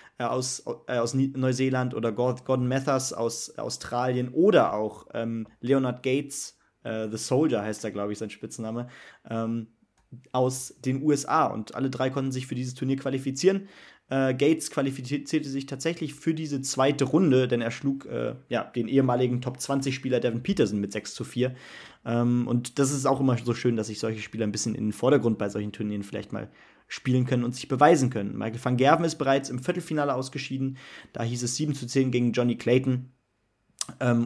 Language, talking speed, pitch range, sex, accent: German, 180 wpm, 115-135 Hz, male, German